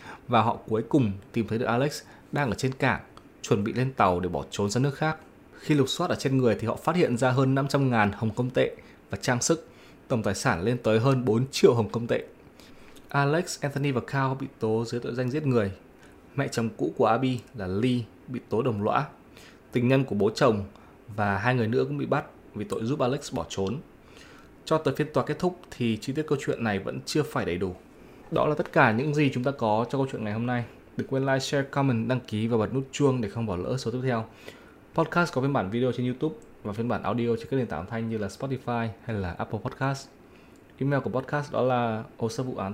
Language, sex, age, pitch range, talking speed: Vietnamese, male, 20-39, 105-135 Hz, 240 wpm